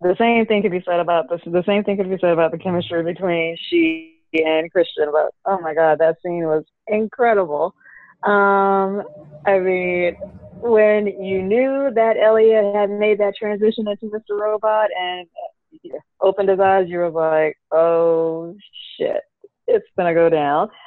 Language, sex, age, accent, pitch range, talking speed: English, female, 20-39, American, 170-210 Hz, 165 wpm